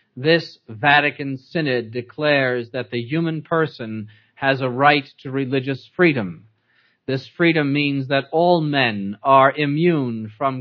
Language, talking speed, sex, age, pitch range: English, 130 wpm, male, 40-59, 130-160 Hz